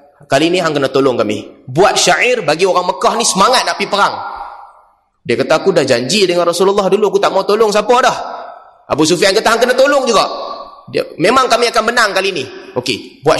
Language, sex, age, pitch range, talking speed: Malay, male, 20-39, 165-225 Hz, 205 wpm